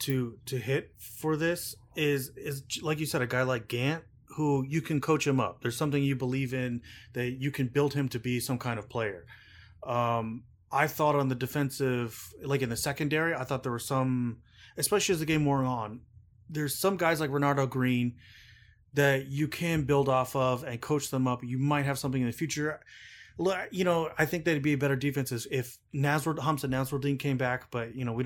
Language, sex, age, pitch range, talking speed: English, male, 30-49, 120-145 Hz, 210 wpm